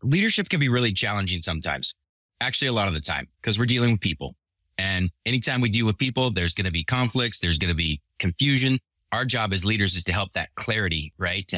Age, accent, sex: 20-39, American, male